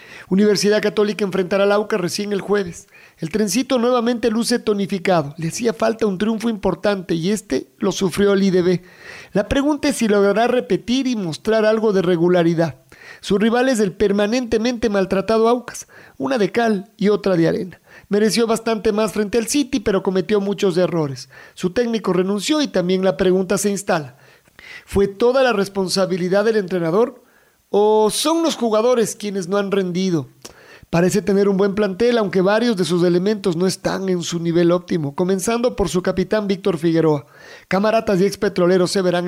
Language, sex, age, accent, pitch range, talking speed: Spanish, male, 50-69, Mexican, 180-220 Hz, 165 wpm